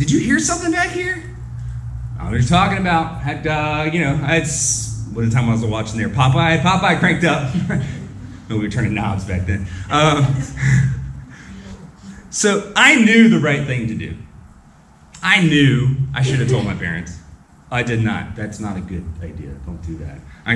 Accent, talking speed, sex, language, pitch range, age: American, 175 wpm, male, English, 100-150 Hz, 30-49